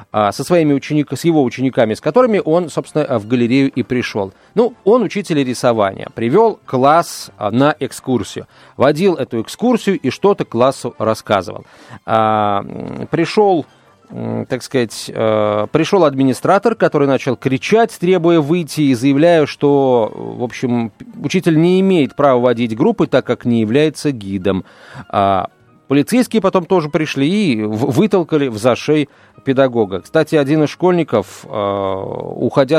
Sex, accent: male, native